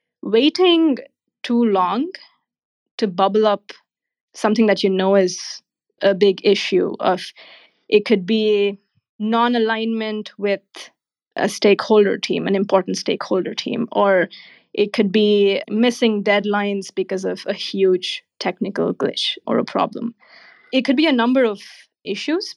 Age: 20-39